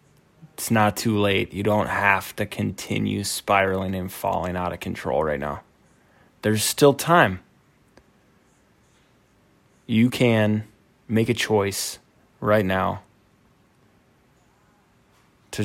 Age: 20-39